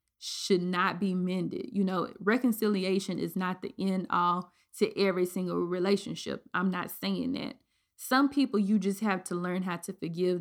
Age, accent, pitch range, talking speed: 20-39, American, 185-230 Hz, 175 wpm